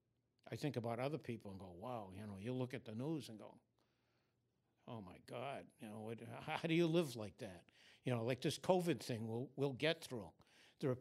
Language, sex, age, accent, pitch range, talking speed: English, male, 60-79, American, 110-130 Hz, 225 wpm